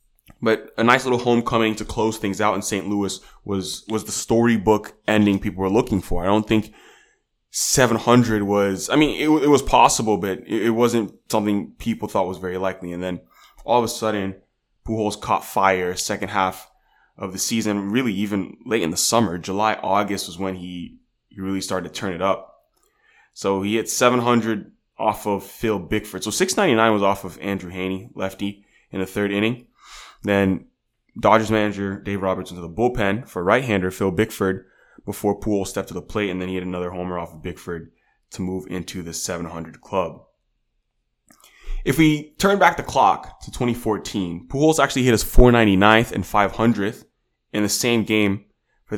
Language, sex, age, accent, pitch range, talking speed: English, male, 20-39, American, 95-115 Hz, 180 wpm